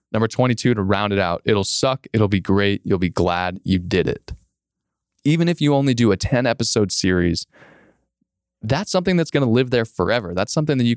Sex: male